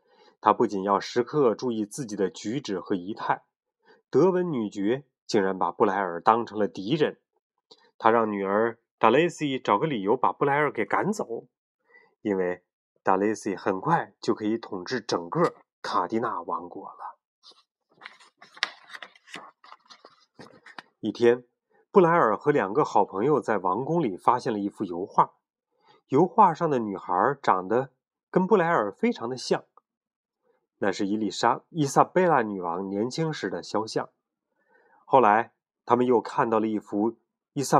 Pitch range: 105-175 Hz